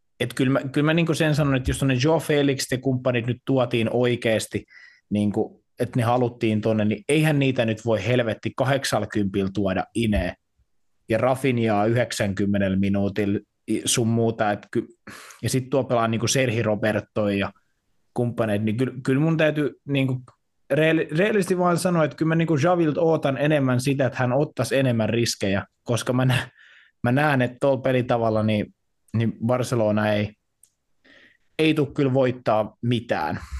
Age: 20-39